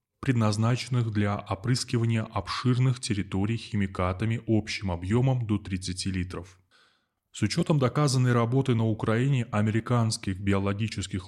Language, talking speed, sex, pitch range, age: Russian, 100 wpm, male, 105-125 Hz, 20-39